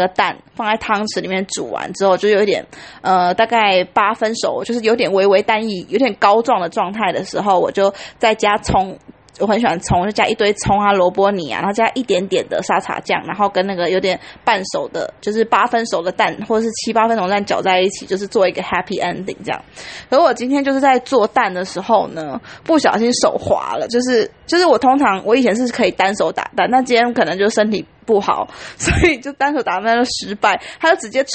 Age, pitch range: 20-39, 205-290 Hz